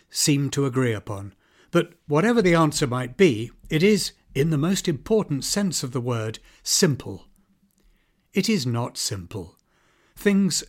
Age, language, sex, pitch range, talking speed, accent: 60-79, English, male, 120-170 Hz, 145 wpm, British